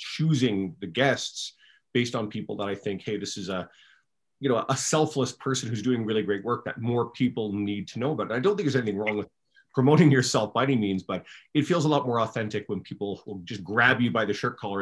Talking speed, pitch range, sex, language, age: 240 wpm, 105-140 Hz, male, English, 30-49